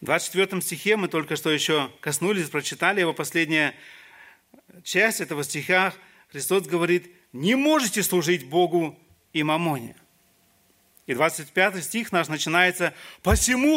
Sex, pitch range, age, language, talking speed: male, 160-225 Hz, 40-59, Russian, 120 wpm